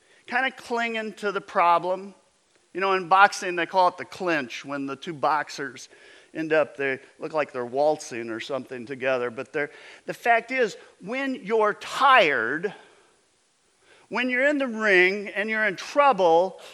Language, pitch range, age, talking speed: English, 160-245 Hz, 50-69, 160 wpm